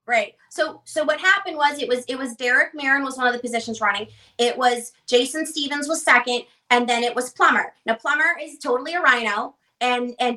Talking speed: 215 wpm